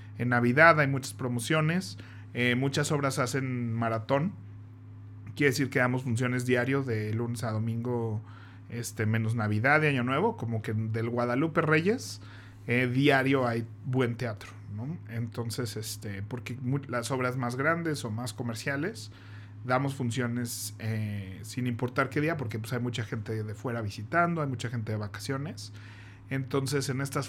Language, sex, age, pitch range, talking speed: Spanish, male, 40-59, 110-130 Hz, 155 wpm